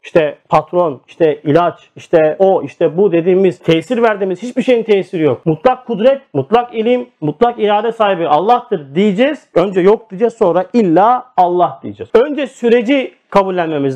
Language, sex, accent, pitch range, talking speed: Turkish, male, native, 180-245 Hz, 145 wpm